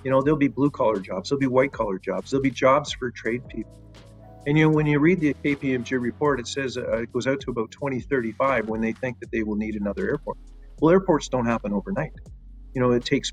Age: 50-69